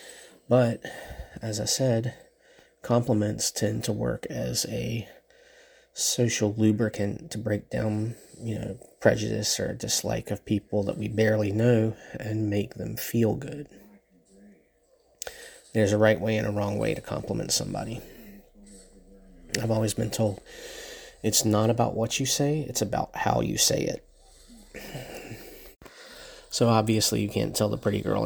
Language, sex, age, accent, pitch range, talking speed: English, male, 30-49, American, 105-120 Hz, 140 wpm